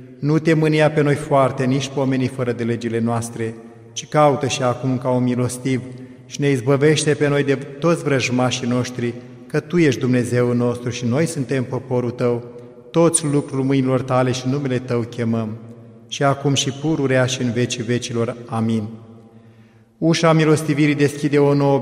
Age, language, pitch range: 30-49, Romanian, 120-140 Hz